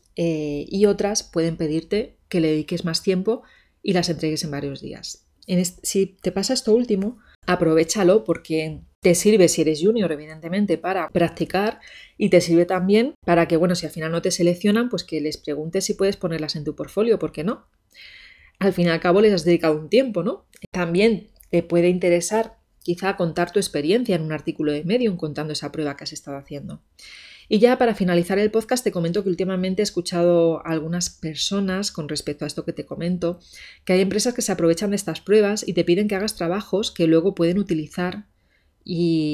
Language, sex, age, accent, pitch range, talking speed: Spanish, female, 30-49, Spanish, 160-205 Hz, 200 wpm